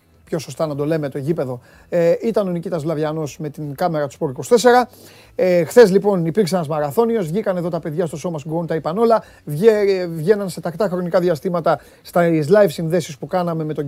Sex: male